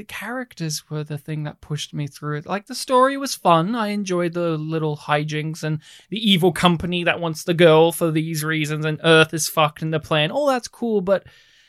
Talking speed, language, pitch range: 215 wpm, English, 155-185 Hz